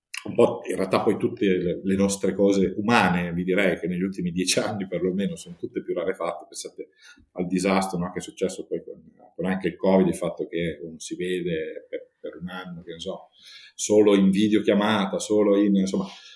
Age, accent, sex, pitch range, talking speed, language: 50-69, native, male, 95-155 Hz, 190 wpm, Italian